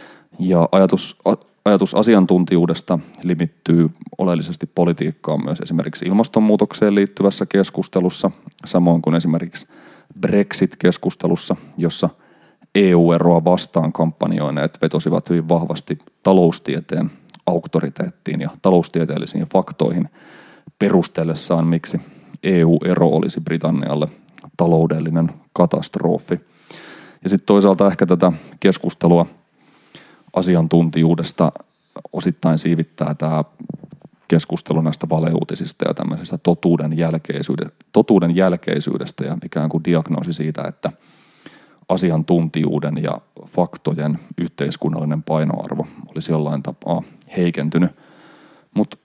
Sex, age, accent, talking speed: male, 30-49, native, 85 wpm